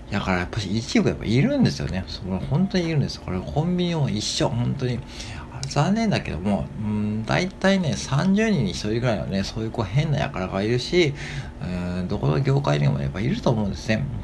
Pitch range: 90-140 Hz